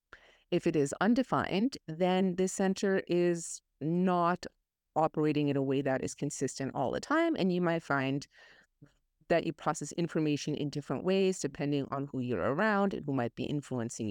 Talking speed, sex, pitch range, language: 170 wpm, female, 145-200 Hz, English